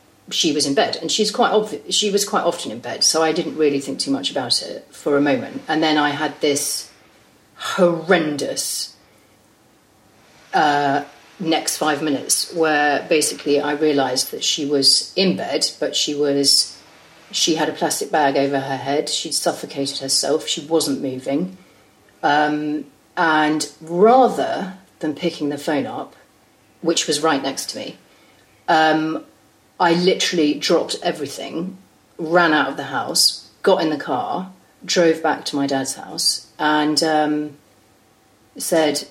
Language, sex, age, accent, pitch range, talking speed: English, female, 40-59, British, 145-190 Hz, 150 wpm